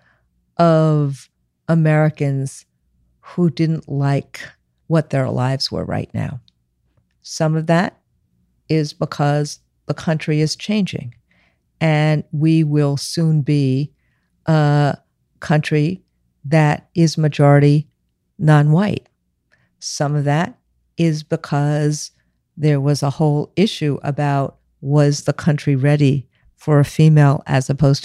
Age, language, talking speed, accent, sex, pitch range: 50-69, English, 110 wpm, American, female, 140-170 Hz